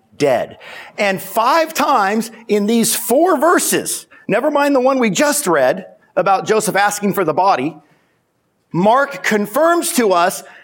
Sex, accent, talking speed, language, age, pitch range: male, American, 140 wpm, English, 50-69, 210-290 Hz